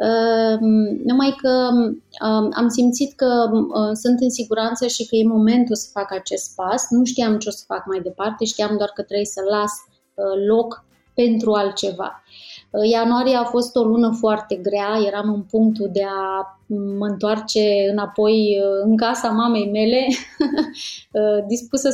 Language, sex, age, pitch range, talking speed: Romanian, female, 20-39, 200-230 Hz, 145 wpm